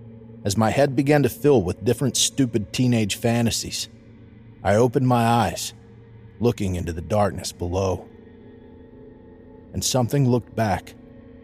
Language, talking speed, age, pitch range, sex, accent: English, 125 wpm, 30-49, 95-115 Hz, male, American